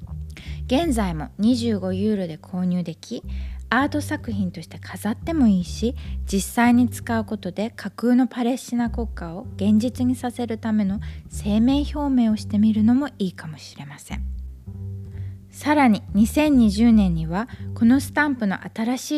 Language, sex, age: Japanese, female, 20-39